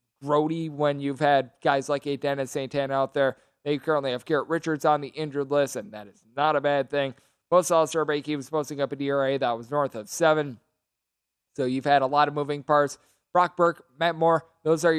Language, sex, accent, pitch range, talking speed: English, male, American, 140-165 Hz, 220 wpm